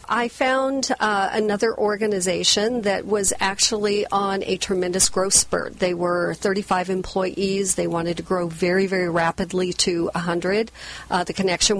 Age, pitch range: 40-59, 175-205 Hz